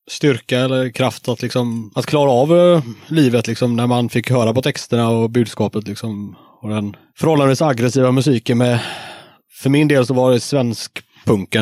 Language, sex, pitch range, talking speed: Swedish, male, 110-130 Hz, 160 wpm